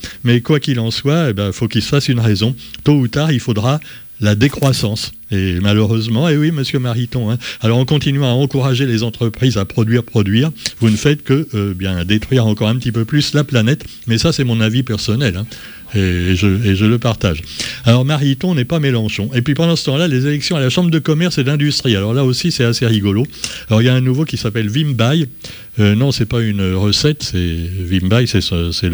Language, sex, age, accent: French, male, 60-79, French